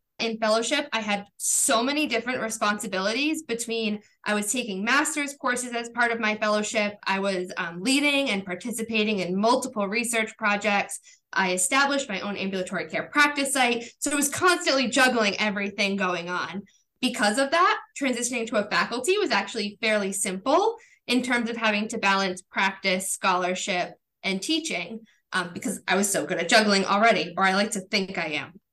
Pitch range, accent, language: 195-250 Hz, American, English